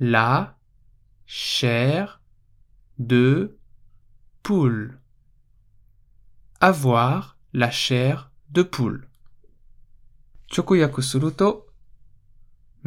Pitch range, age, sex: 115-145 Hz, 20-39, male